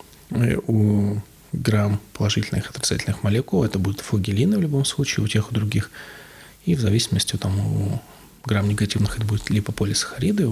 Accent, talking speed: native, 150 wpm